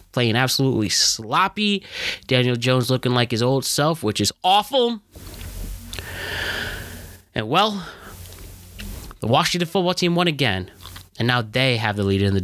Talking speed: 140 wpm